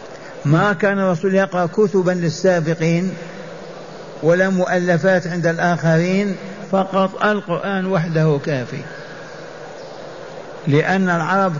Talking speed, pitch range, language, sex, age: 85 wpm, 165-195 Hz, Arabic, male, 50-69